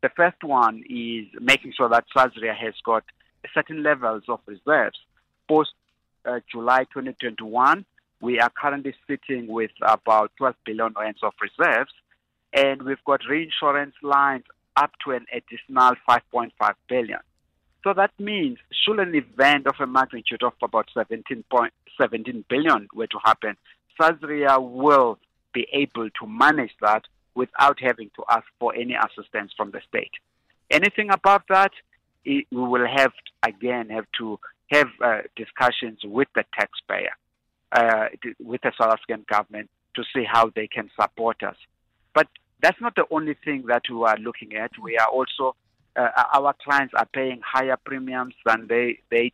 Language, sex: English, male